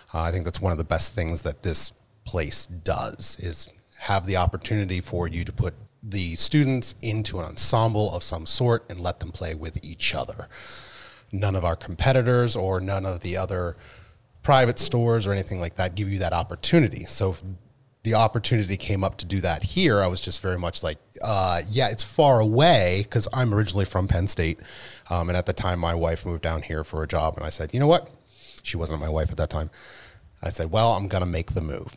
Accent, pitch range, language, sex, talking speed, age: American, 90-115 Hz, English, male, 220 wpm, 30-49